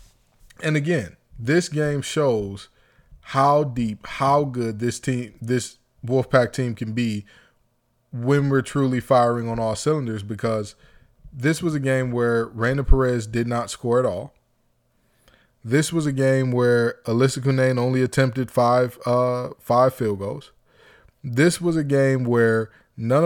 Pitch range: 115-135 Hz